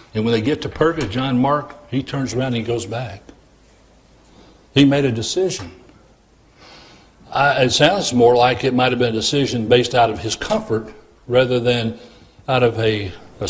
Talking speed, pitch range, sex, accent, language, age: 180 wpm, 100-125 Hz, male, American, English, 60-79